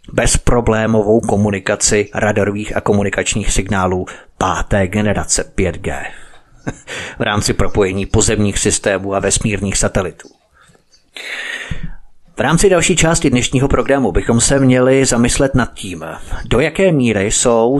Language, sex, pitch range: Czech, male, 100-130 Hz